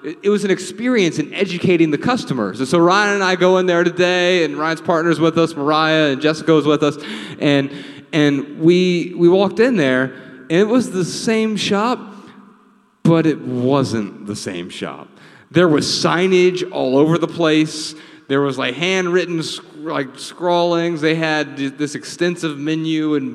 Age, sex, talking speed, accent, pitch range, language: 30-49, male, 170 wpm, American, 130-185 Hz, English